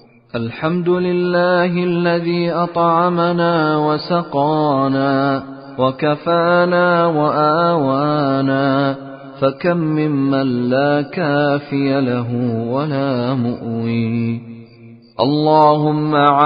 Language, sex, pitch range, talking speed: Arabic, male, 130-155 Hz, 55 wpm